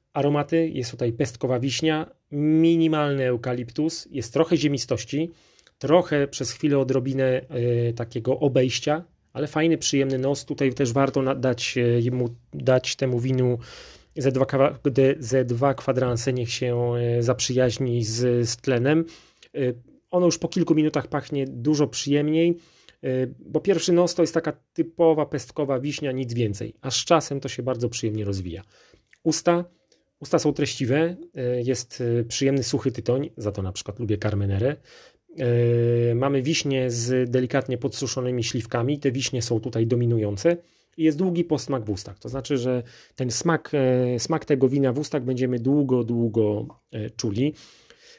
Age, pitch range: 30-49, 120-150 Hz